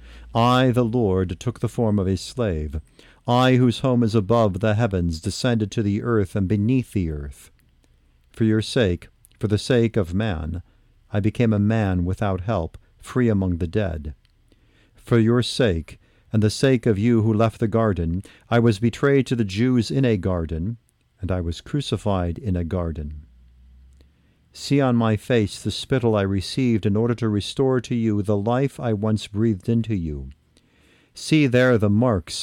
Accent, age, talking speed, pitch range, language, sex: American, 50-69, 175 wpm, 90-120 Hz, English, male